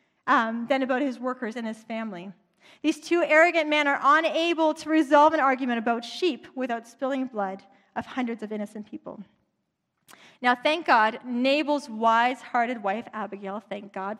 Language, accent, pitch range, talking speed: English, American, 225-285 Hz, 155 wpm